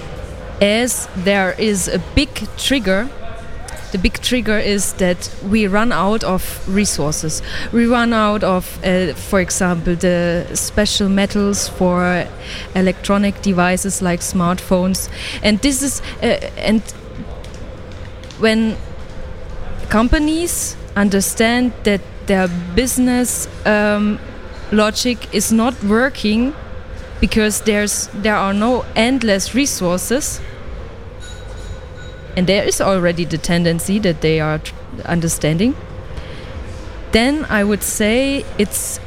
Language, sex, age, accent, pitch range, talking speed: Ukrainian, female, 20-39, German, 175-220 Hz, 110 wpm